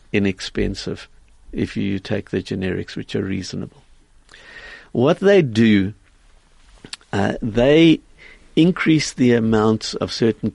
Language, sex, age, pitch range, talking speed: English, male, 60-79, 105-130 Hz, 110 wpm